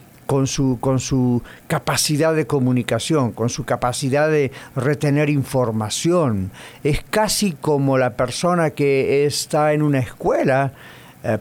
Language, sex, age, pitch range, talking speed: English, male, 50-69, 130-170 Hz, 125 wpm